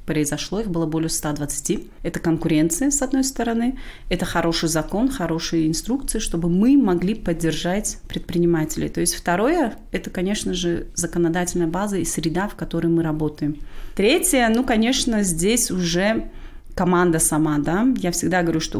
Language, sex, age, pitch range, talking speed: Russian, female, 30-49, 165-205 Hz, 155 wpm